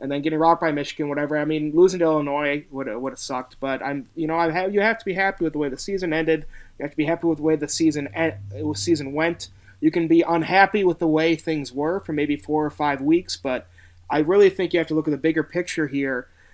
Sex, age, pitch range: male, 30-49, 130-155 Hz